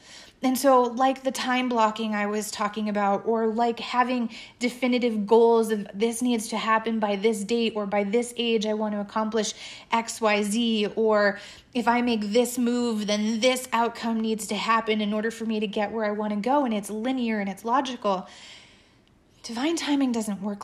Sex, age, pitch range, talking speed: female, 30-49, 210-240 Hz, 195 wpm